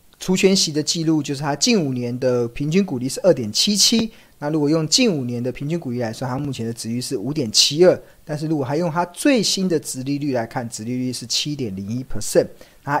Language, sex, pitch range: Chinese, male, 120-165 Hz